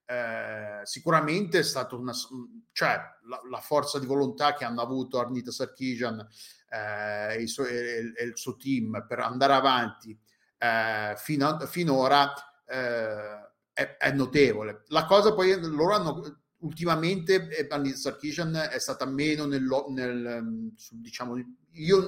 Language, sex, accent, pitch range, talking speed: Italian, male, native, 125-150 Hz, 140 wpm